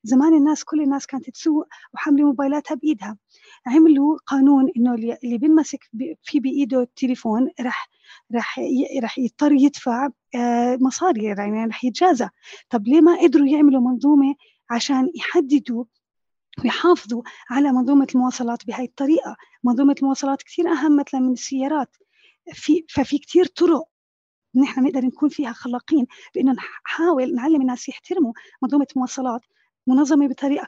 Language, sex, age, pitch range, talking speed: Arabic, female, 30-49, 235-290 Hz, 125 wpm